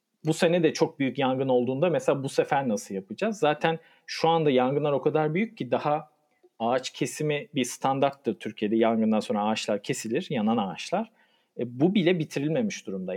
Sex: male